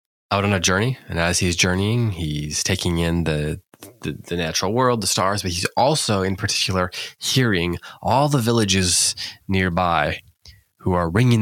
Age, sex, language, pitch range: 20-39, male, English, 85-105 Hz